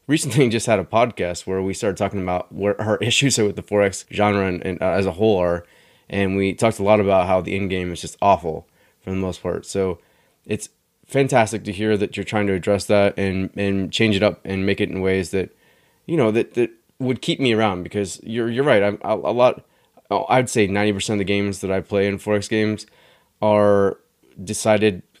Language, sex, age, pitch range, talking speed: English, male, 20-39, 95-115 Hz, 220 wpm